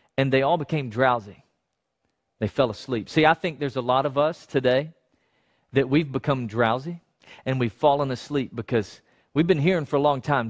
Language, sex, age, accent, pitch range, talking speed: English, male, 40-59, American, 140-195 Hz, 190 wpm